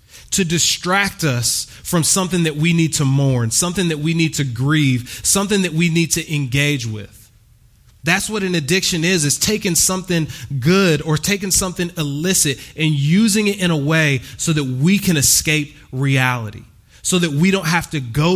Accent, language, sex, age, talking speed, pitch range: American, English, male, 30-49, 180 wpm, 135-175 Hz